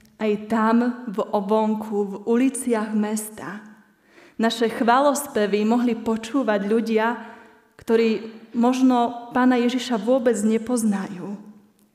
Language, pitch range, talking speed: Slovak, 210-240 Hz, 90 wpm